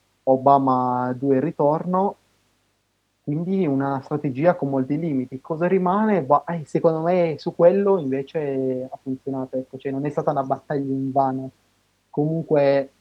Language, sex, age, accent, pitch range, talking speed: Italian, male, 30-49, native, 130-145 Hz, 135 wpm